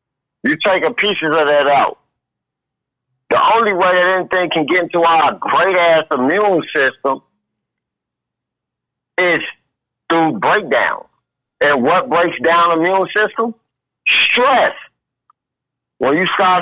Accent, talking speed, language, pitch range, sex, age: American, 120 wpm, English, 145-205 Hz, male, 50-69